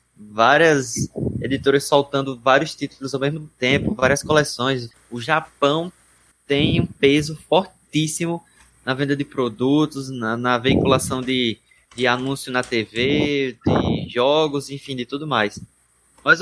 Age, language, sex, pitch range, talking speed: 20-39, Portuguese, male, 120-150 Hz, 130 wpm